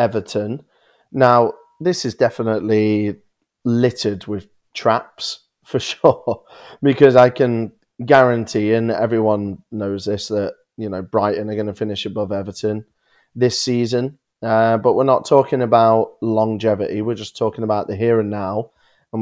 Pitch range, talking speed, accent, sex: 105-125 Hz, 145 wpm, British, male